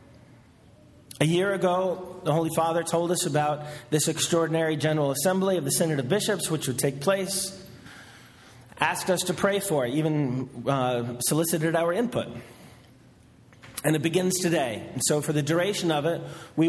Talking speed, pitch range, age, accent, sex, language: 160 wpm, 130-180 Hz, 30-49, American, male, English